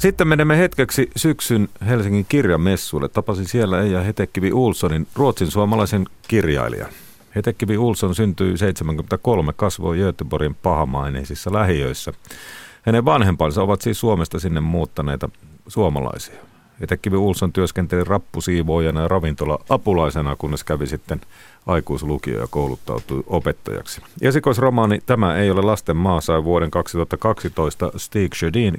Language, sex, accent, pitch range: Finnish, male, native, 80-105 Hz